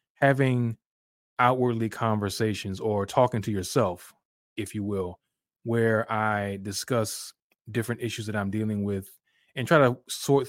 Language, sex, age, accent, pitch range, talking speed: English, male, 20-39, American, 100-120 Hz, 130 wpm